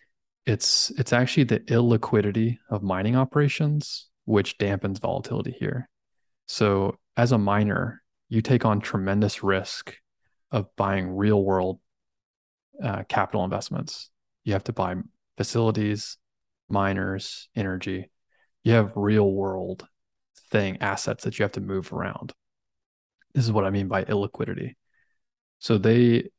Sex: male